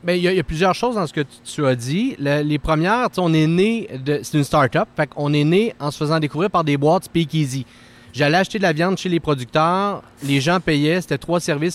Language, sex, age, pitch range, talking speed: French, male, 30-49, 135-175 Hz, 265 wpm